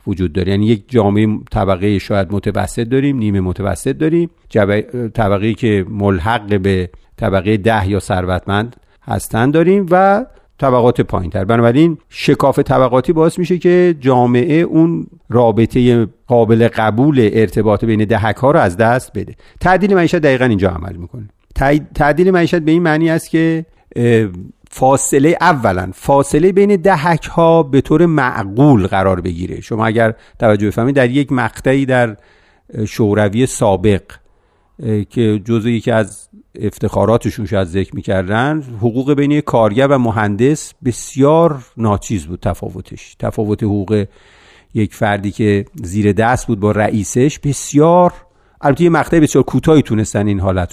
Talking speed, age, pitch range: 135 wpm, 50-69, 105-135 Hz